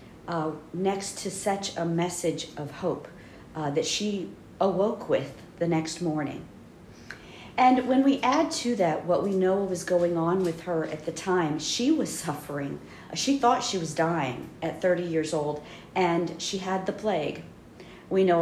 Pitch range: 160-190 Hz